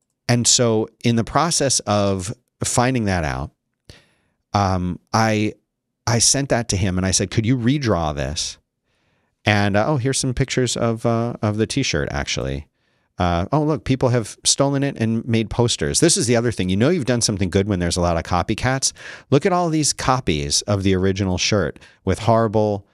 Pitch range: 95-125 Hz